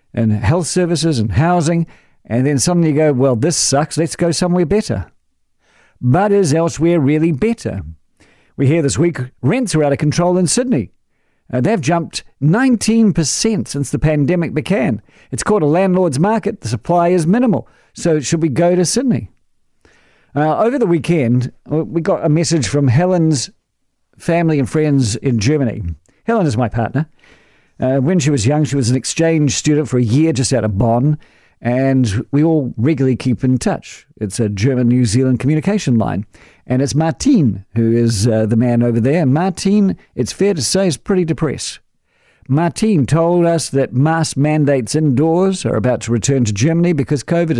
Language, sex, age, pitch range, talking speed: English, male, 50-69, 125-170 Hz, 175 wpm